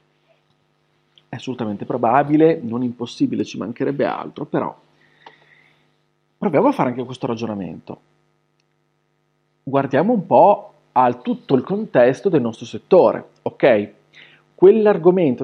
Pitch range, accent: 140-180 Hz, native